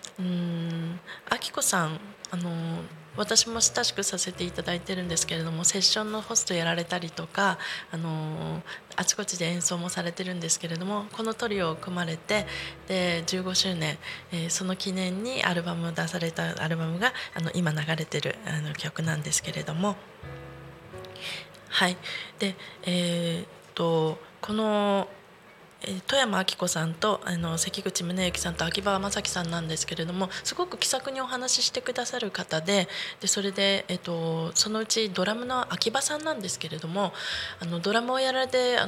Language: Japanese